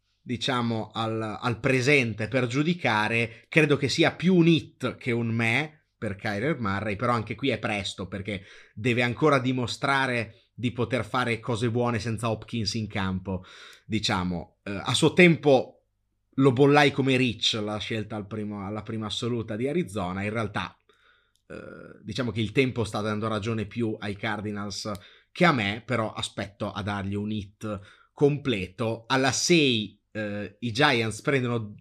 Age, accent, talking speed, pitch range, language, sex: 30-49, native, 150 wpm, 105-135 Hz, Italian, male